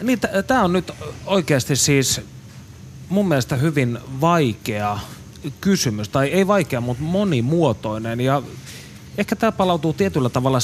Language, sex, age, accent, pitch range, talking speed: Finnish, male, 30-49, native, 115-160 Hz, 130 wpm